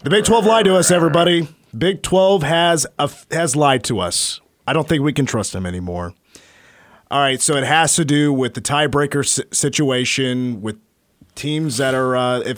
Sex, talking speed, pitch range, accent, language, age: male, 200 wpm, 125-165 Hz, American, English, 30-49